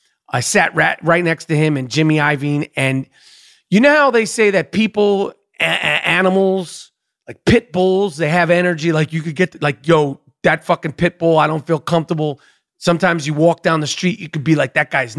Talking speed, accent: 215 wpm, American